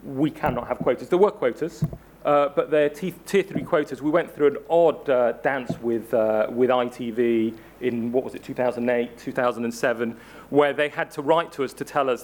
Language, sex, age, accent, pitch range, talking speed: English, male, 40-59, British, 125-155 Hz, 190 wpm